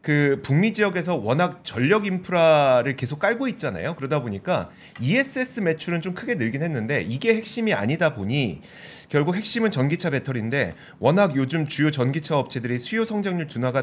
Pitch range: 130-200 Hz